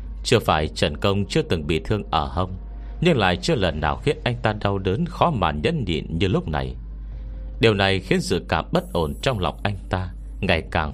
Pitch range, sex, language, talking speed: 70-105 Hz, male, Vietnamese, 220 wpm